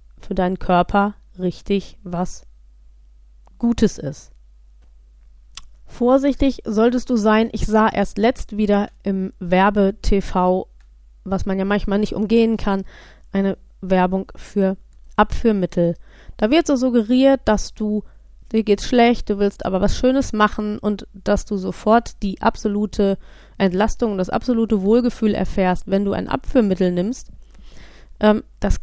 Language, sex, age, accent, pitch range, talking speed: German, female, 20-39, German, 190-225 Hz, 130 wpm